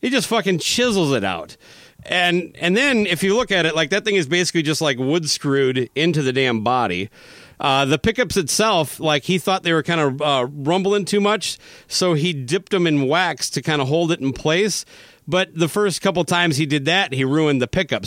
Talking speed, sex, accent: 225 wpm, male, American